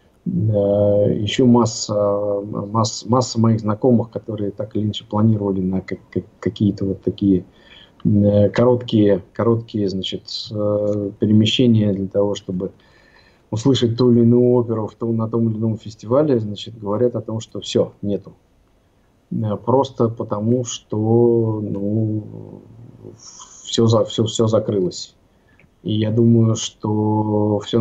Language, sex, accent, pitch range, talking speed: Russian, male, native, 100-115 Hz, 110 wpm